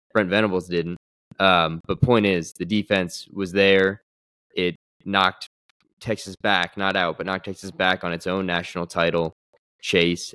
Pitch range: 90-105 Hz